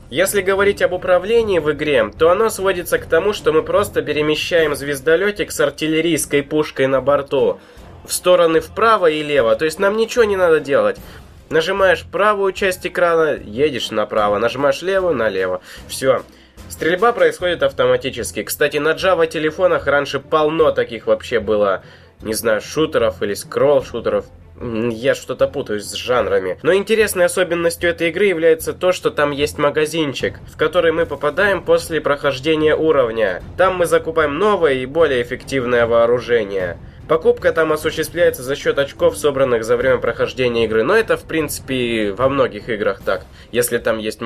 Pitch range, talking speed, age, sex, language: 140-210 Hz, 155 wpm, 20-39, male, Russian